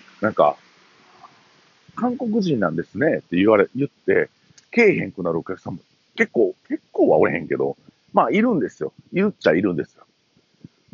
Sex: male